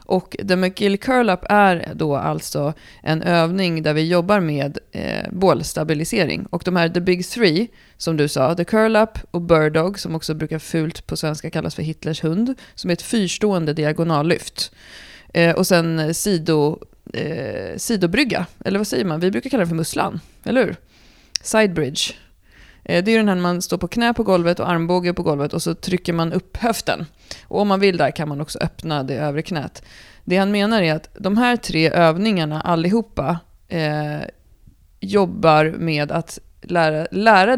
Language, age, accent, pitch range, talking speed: Swedish, 30-49, native, 155-195 Hz, 180 wpm